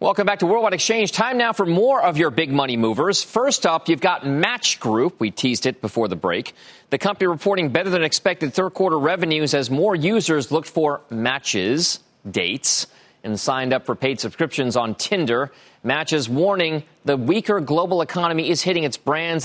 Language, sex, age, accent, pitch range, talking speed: English, male, 40-59, American, 135-185 Hz, 185 wpm